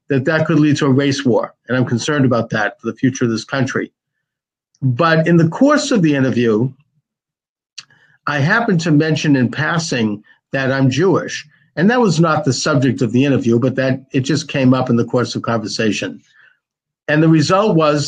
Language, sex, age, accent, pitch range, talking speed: English, male, 50-69, American, 130-160 Hz, 195 wpm